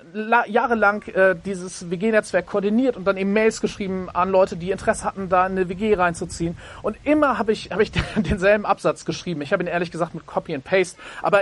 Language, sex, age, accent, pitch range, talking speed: German, male, 40-59, German, 160-215 Hz, 205 wpm